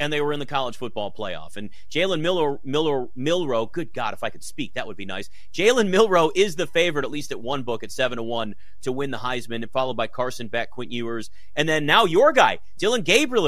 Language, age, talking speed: English, 30-49, 245 wpm